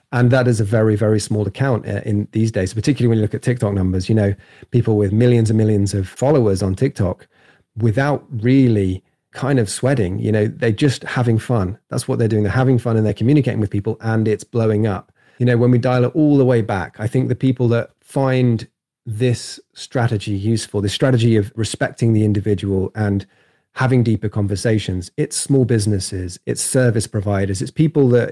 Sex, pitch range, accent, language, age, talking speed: male, 105-125 Hz, British, English, 30-49, 200 wpm